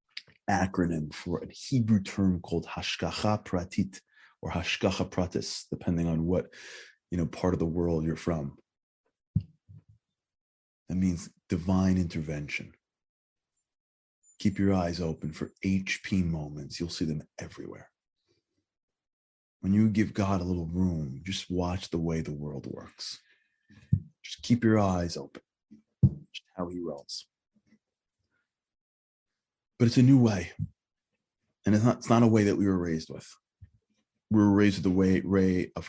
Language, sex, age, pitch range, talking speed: English, male, 30-49, 85-100 Hz, 135 wpm